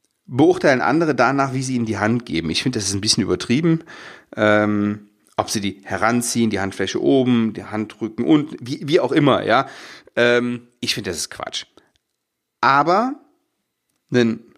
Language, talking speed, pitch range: German, 165 wpm, 110-145 Hz